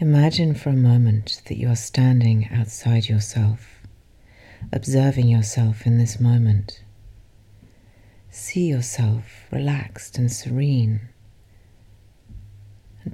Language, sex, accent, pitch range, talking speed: English, female, British, 100-125 Hz, 95 wpm